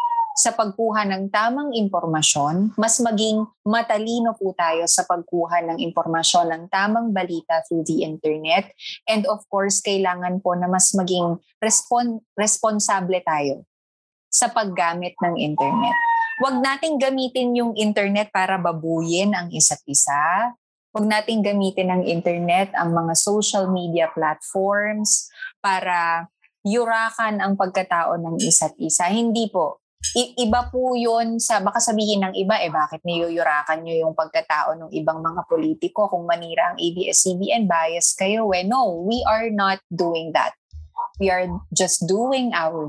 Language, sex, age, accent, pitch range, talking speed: Filipino, female, 20-39, native, 165-220 Hz, 140 wpm